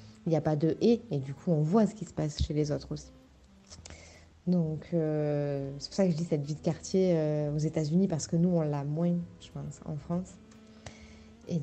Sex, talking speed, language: female, 245 wpm, French